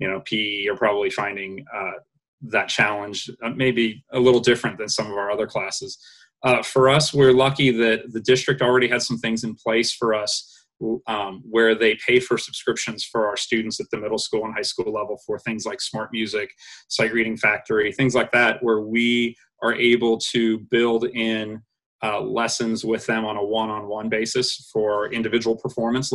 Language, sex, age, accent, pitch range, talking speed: English, male, 30-49, American, 110-130 Hz, 185 wpm